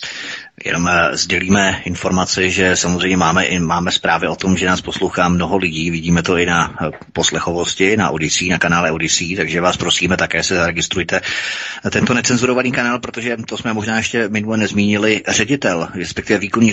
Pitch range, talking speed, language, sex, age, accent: 90-100 Hz, 170 wpm, Czech, male, 30-49, native